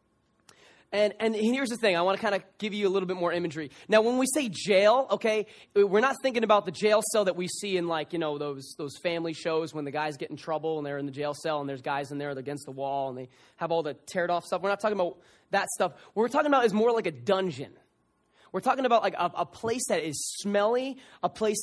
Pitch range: 165-225 Hz